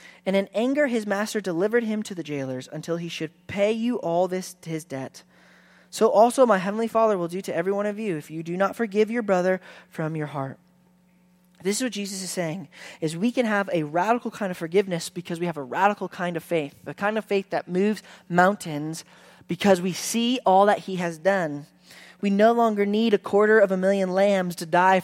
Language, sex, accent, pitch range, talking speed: English, male, American, 165-200 Hz, 220 wpm